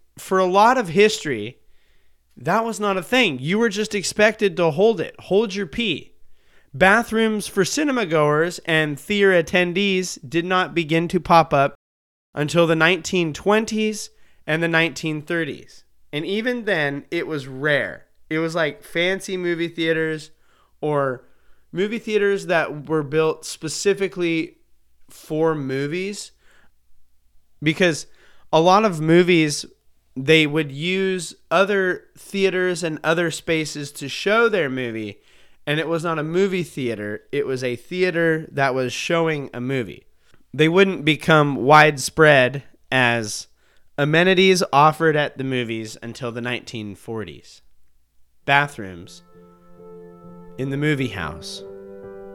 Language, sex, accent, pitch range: English, male, American, 130-185 Hz